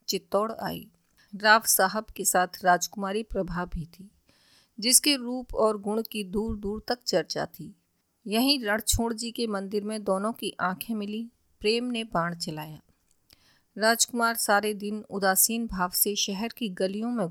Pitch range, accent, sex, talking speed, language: 190-230 Hz, native, female, 155 wpm, Hindi